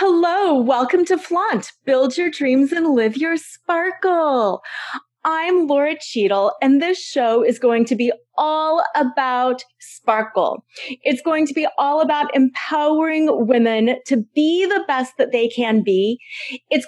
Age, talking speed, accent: 30-49, 145 wpm, American